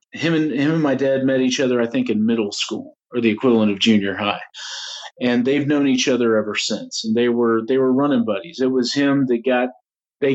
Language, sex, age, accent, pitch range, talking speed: English, male, 40-59, American, 115-140 Hz, 230 wpm